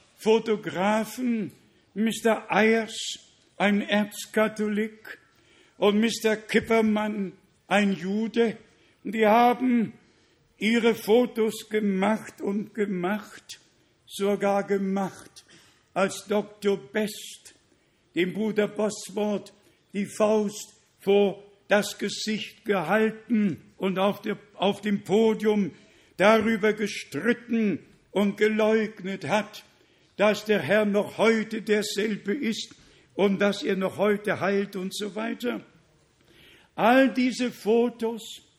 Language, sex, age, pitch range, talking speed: German, male, 60-79, 200-225 Hz, 90 wpm